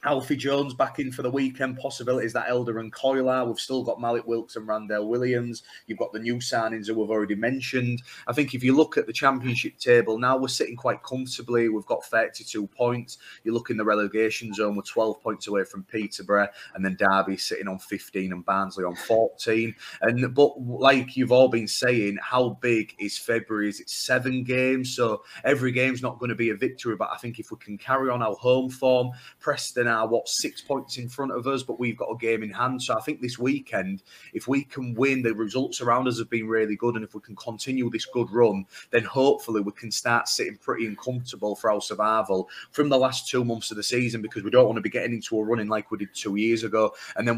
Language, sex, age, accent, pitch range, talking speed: English, male, 30-49, British, 110-125 Hz, 230 wpm